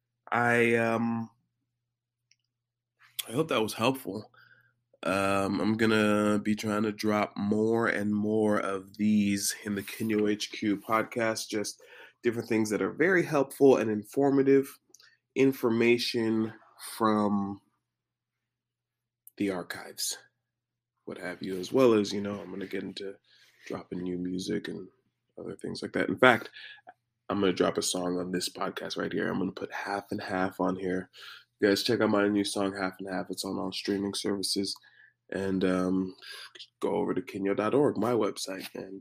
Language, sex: English, male